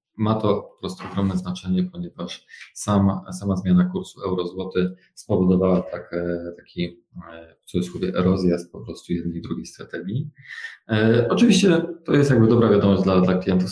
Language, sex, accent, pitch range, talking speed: Polish, male, native, 90-110 Hz, 145 wpm